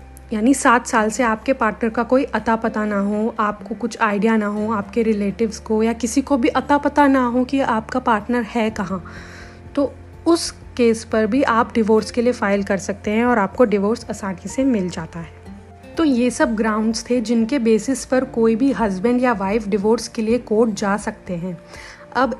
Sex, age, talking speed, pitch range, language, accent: female, 30-49, 200 wpm, 205-250 Hz, Hindi, native